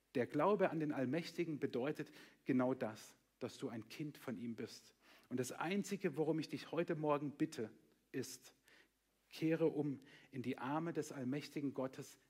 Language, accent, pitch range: German, German, 135-160 Hz